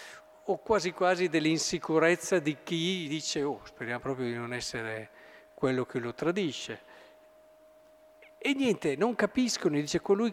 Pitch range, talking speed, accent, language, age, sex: 145-230 Hz, 135 wpm, native, Italian, 50-69, male